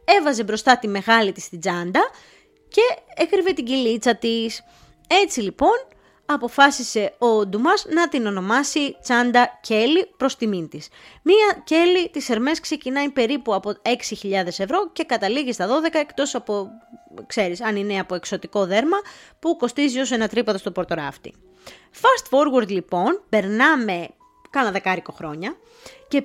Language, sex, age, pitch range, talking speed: Greek, female, 20-39, 205-315 Hz, 140 wpm